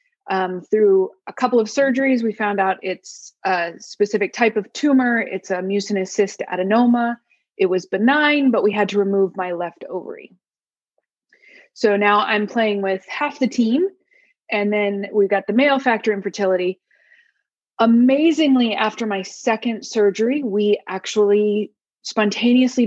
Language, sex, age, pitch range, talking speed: English, female, 20-39, 195-250 Hz, 145 wpm